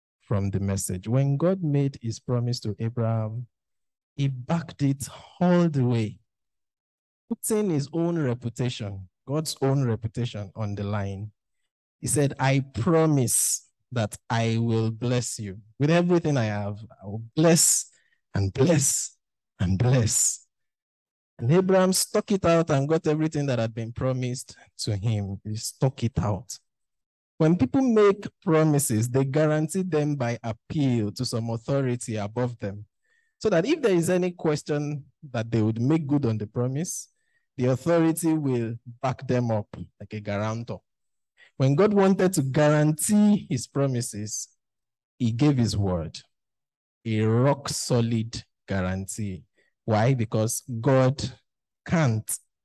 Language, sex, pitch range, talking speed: English, male, 110-150 Hz, 135 wpm